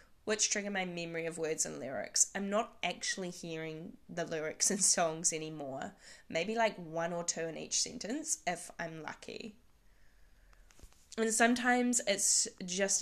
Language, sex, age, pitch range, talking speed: English, female, 10-29, 170-225 Hz, 145 wpm